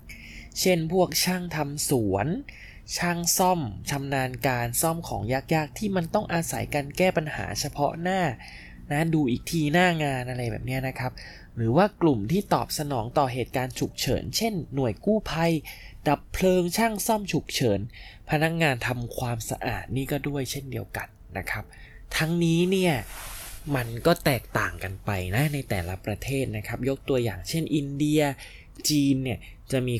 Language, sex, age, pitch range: Thai, male, 20-39, 105-155 Hz